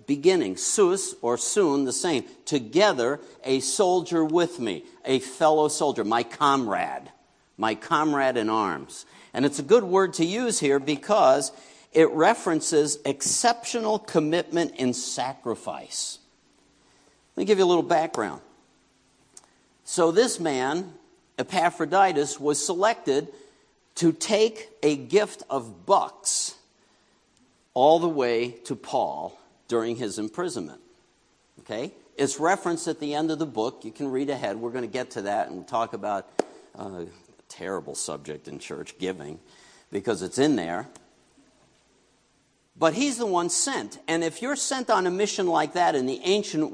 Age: 60-79